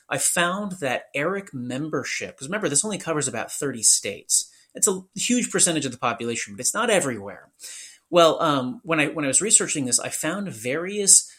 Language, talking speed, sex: English, 190 wpm, male